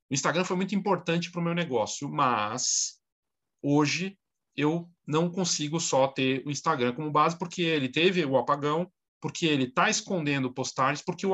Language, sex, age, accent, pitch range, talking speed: Portuguese, male, 40-59, Brazilian, 130-190 Hz, 170 wpm